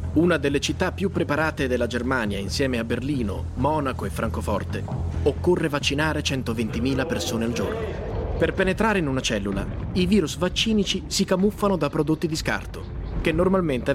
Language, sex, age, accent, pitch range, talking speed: Italian, male, 30-49, native, 115-160 Hz, 150 wpm